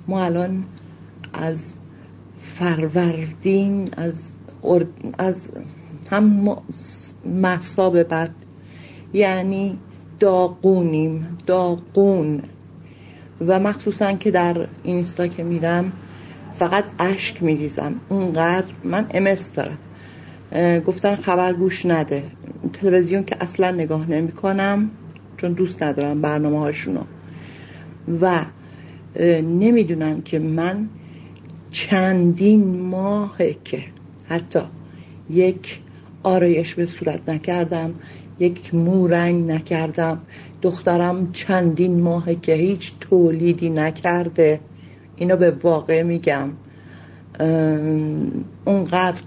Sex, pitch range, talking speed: female, 160-185 Hz, 85 wpm